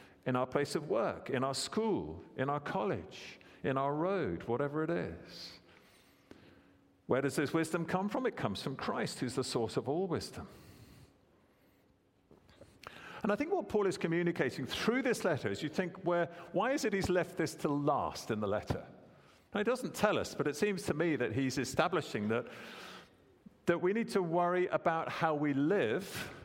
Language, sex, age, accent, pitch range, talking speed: English, male, 50-69, British, 125-170 Hz, 185 wpm